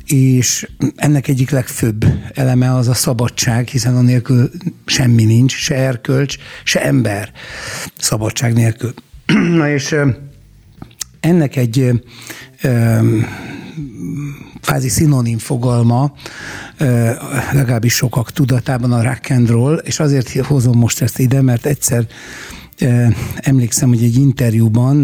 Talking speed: 110 wpm